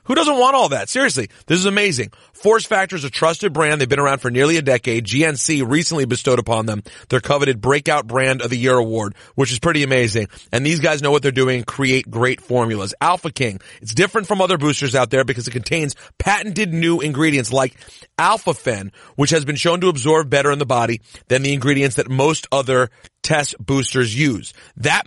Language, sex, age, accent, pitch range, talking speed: English, male, 30-49, American, 125-170 Hz, 210 wpm